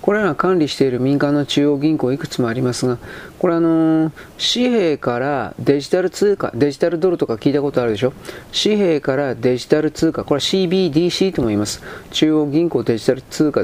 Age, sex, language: 40-59, male, Japanese